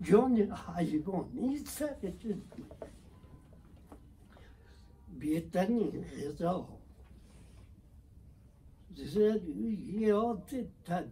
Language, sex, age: Persian, male, 60-79